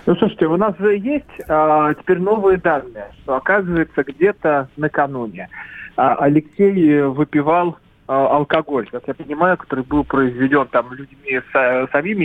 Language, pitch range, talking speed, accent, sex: Russian, 135-160 Hz, 140 wpm, native, male